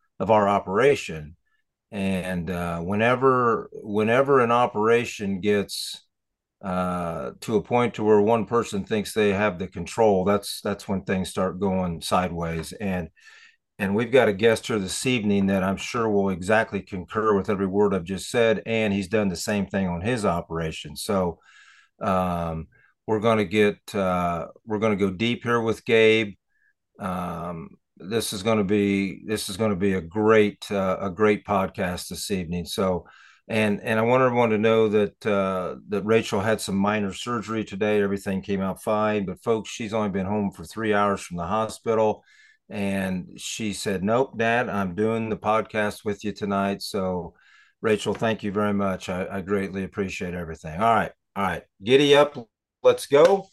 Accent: American